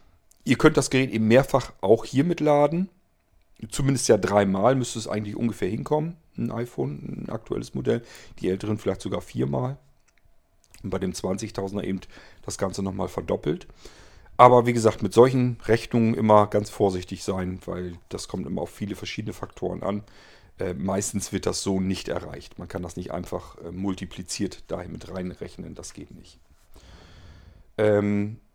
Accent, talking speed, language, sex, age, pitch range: German, 160 wpm, German, male, 40-59, 95-125 Hz